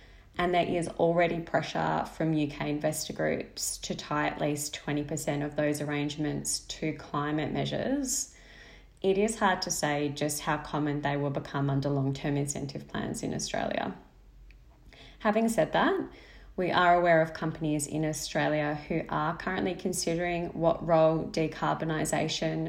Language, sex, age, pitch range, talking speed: English, female, 20-39, 145-175 Hz, 145 wpm